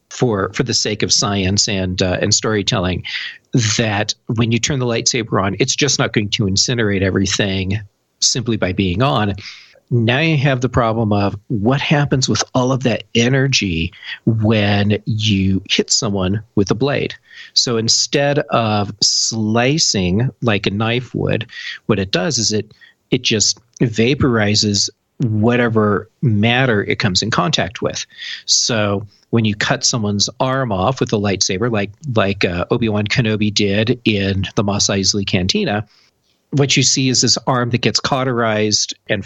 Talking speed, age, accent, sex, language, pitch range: 155 wpm, 40-59, American, male, English, 100-125 Hz